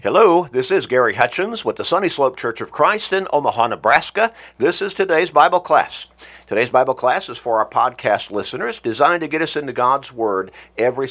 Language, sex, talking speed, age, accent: English, male, 195 wpm, 50-69, American